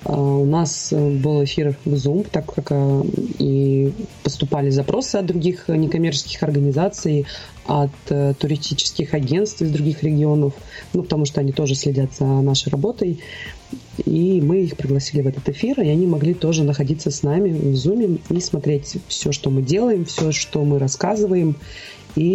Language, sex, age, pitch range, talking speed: Russian, female, 20-39, 140-170 Hz, 155 wpm